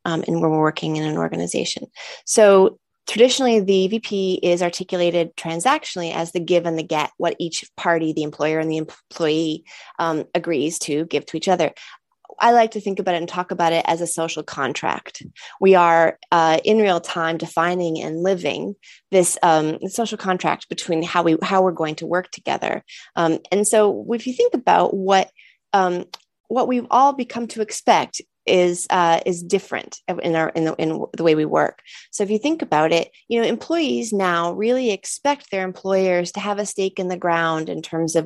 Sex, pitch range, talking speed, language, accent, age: female, 165-210 Hz, 200 wpm, English, American, 30-49